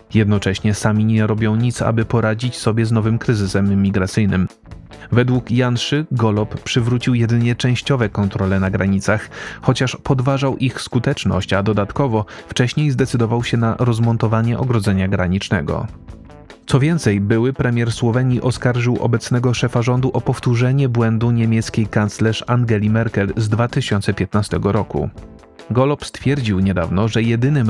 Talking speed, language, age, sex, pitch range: 125 wpm, Polish, 30-49, male, 105-125 Hz